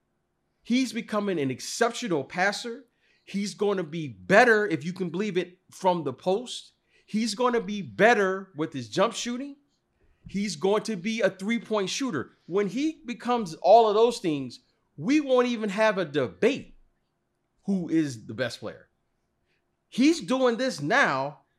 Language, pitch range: English, 180-245 Hz